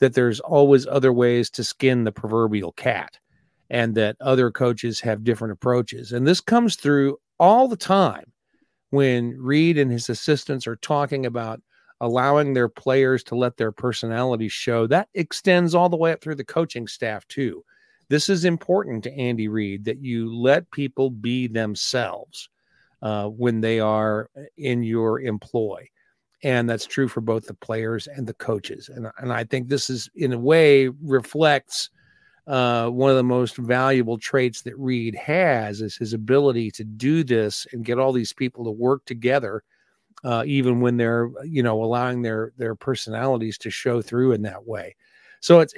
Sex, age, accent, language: male, 40-59, American, English